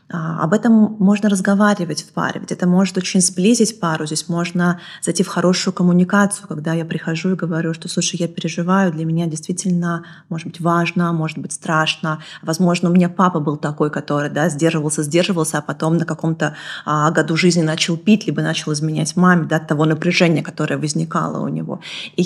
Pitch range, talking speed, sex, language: 160-185 Hz, 185 wpm, female, Russian